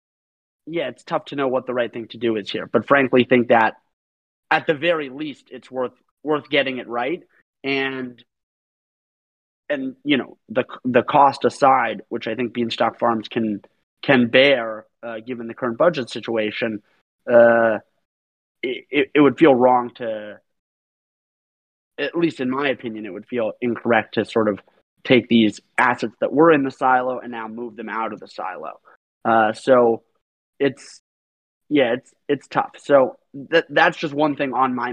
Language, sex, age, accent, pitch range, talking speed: English, male, 30-49, American, 115-130 Hz, 170 wpm